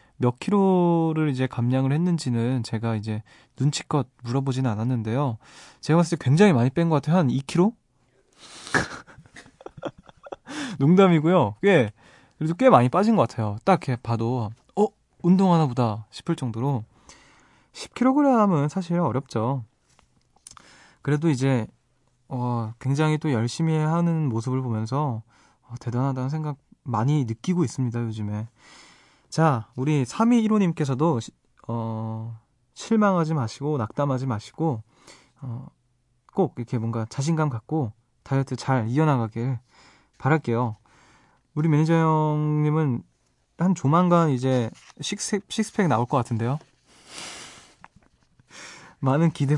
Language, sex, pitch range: Korean, male, 120-160 Hz